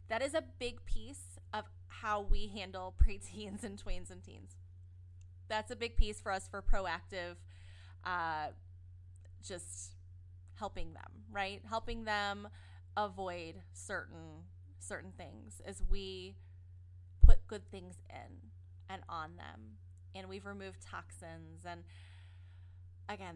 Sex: female